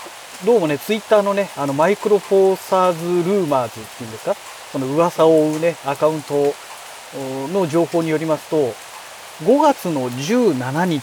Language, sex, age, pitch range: Japanese, male, 40-59, 140-210 Hz